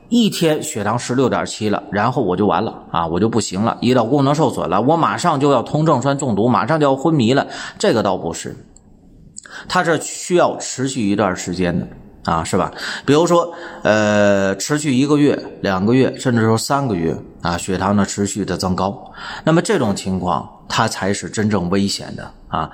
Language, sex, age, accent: Chinese, male, 30-49, native